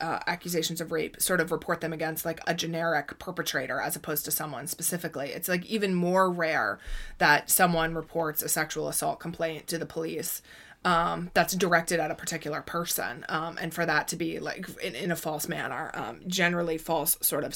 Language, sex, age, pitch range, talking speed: English, female, 20-39, 160-170 Hz, 195 wpm